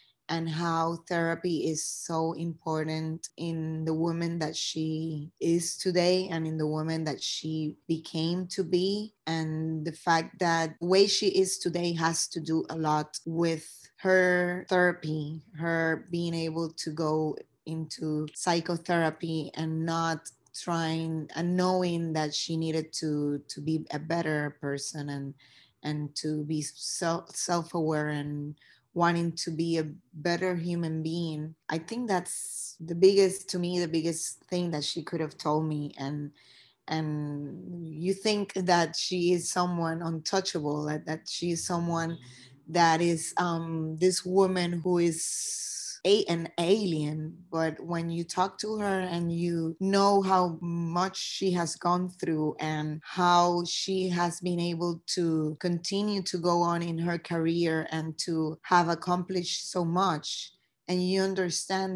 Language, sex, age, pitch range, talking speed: English, female, 20-39, 160-175 Hz, 145 wpm